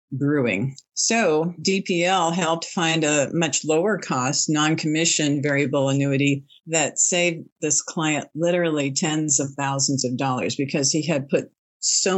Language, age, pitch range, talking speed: English, 50-69, 135-160 Hz, 135 wpm